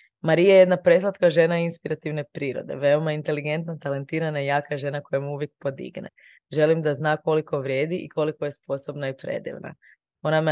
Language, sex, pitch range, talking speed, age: Croatian, female, 140-170 Hz, 170 wpm, 20-39